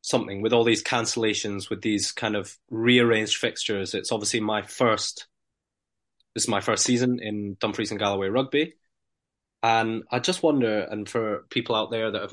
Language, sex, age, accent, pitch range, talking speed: English, male, 20-39, British, 105-120 Hz, 175 wpm